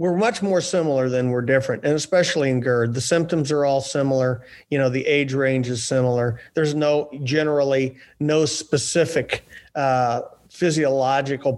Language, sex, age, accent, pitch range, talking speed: English, male, 40-59, American, 130-165 Hz, 155 wpm